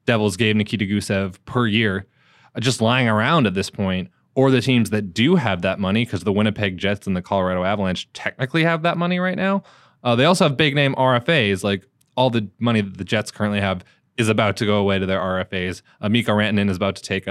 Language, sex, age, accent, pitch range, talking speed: English, male, 20-39, American, 100-140 Hz, 225 wpm